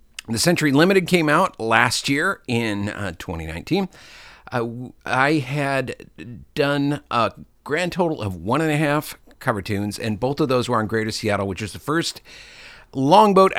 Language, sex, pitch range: English, male, 105-145 Hz